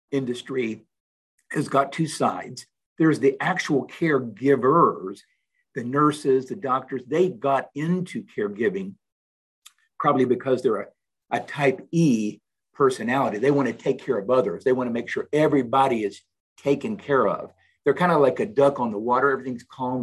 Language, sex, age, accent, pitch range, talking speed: English, male, 50-69, American, 120-165 Hz, 160 wpm